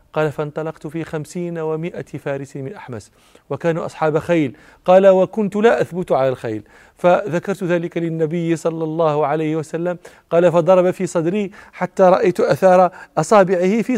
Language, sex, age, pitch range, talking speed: Arabic, male, 40-59, 135-165 Hz, 140 wpm